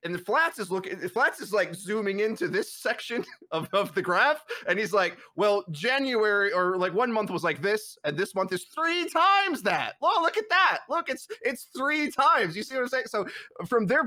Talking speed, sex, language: 220 wpm, male, English